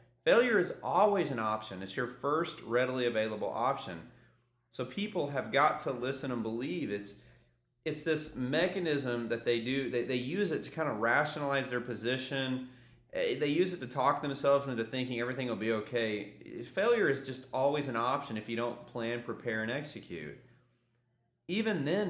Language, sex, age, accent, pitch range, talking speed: English, male, 30-49, American, 115-150 Hz, 170 wpm